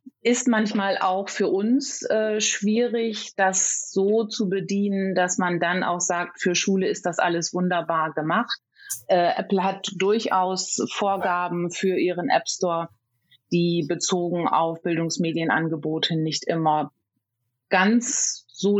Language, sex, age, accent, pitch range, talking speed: German, female, 30-49, German, 160-190 Hz, 130 wpm